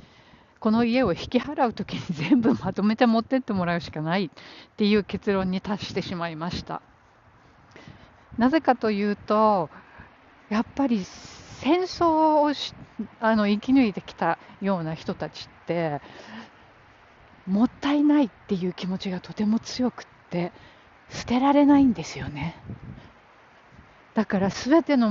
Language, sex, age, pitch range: Japanese, female, 50-69, 175-230 Hz